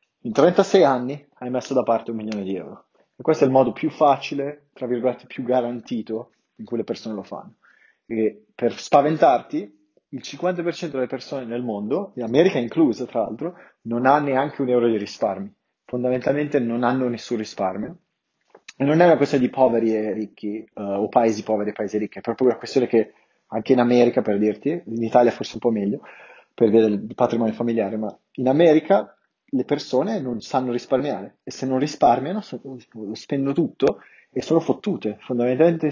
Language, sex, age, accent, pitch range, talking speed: Italian, male, 30-49, native, 115-135 Hz, 185 wpm